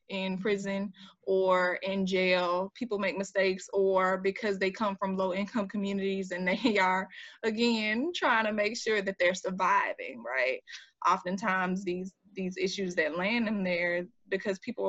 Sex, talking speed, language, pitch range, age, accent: female, 150 wpm, English, 185-210 Hz, 20-39, American